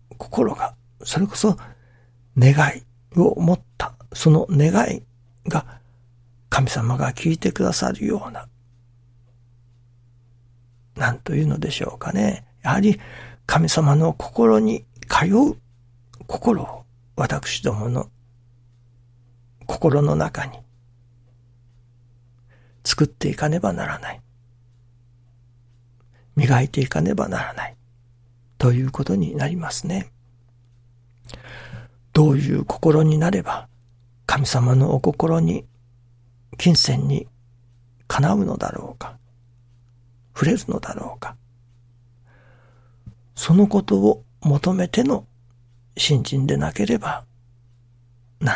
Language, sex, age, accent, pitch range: Japanese, male, 60-79, native, 120-140 Hz